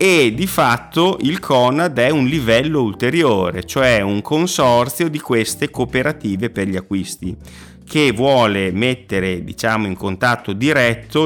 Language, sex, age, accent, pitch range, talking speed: Italian, male, 30-49, native, 95-125 Hz, 135 wpm